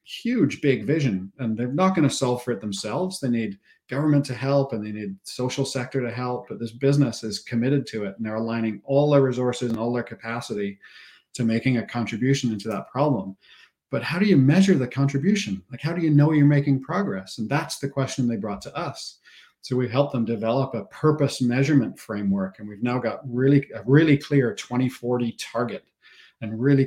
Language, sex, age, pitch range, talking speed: English, male, 40-59, 110-135 Hz, 205 wpm